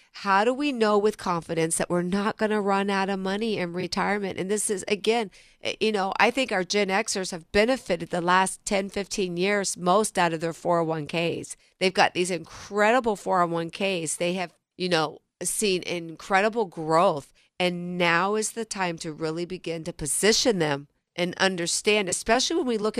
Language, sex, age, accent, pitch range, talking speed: English, female, 40-59, American, 170-210 Hz, 180 wpm